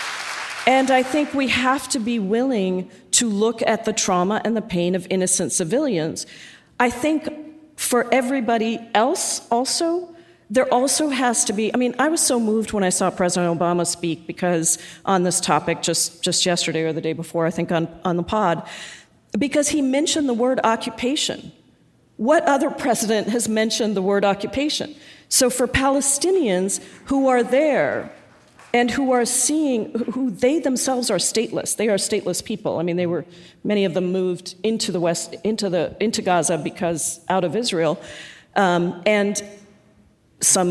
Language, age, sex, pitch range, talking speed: English, 40-59, female, 185-255 Hz, 170 wpm